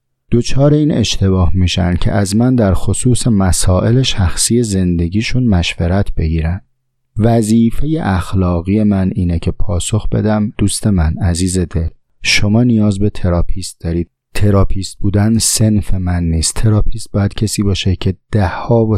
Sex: male